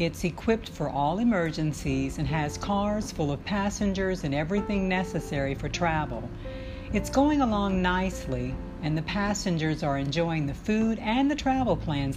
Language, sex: English, female